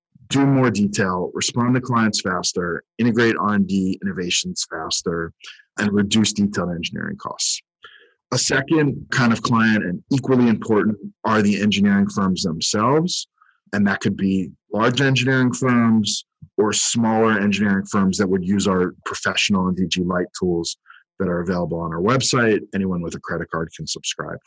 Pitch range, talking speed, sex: 95-125 Hz, 150 wpm, male